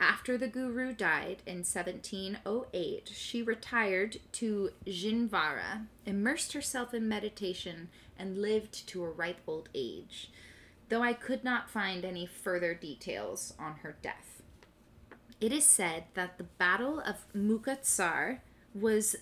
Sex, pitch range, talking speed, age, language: female, 185-240 Hz, 130 wpm, 20-39, English